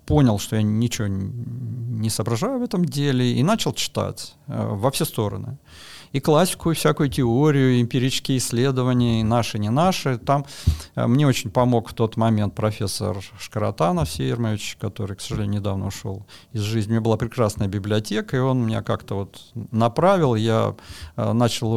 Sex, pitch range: male, 105-135 Hz